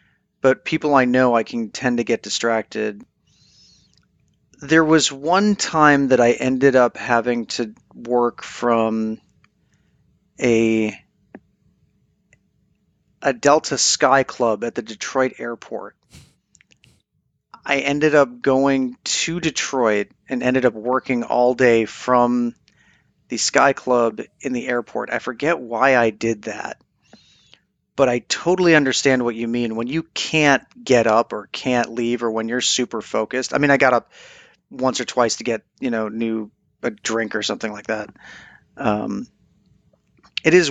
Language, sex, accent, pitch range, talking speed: English, male, American, 115-135 Hz, 145 wpm